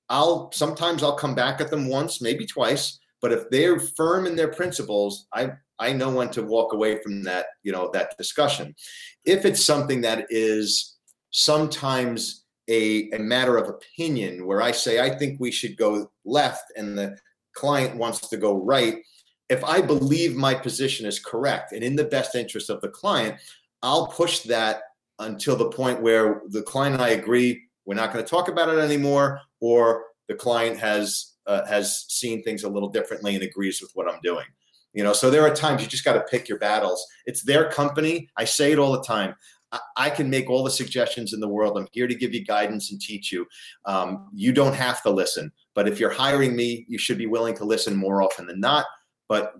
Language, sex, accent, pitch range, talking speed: English, male, American, 110-145 Hz, 210 wpm